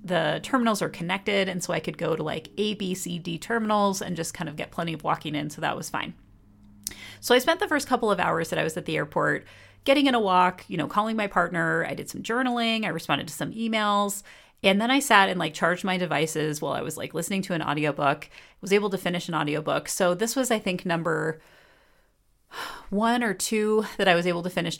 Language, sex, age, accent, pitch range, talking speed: English, female, 30-49, American, 165-210 Hz, 240 wpm